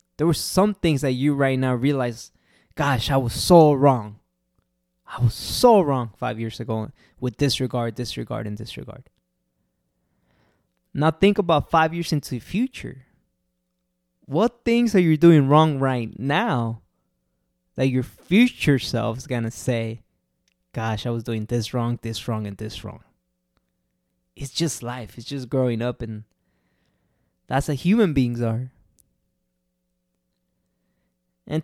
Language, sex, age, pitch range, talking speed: English, male, 20-39, 115-170 Hz, 140 wpm